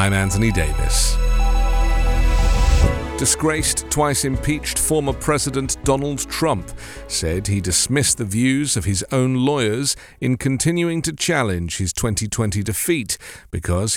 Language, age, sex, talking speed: English, 40-59, male, 115 wpm